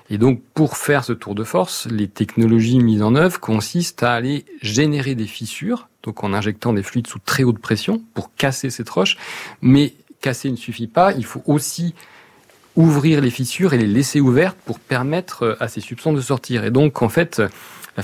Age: 40-59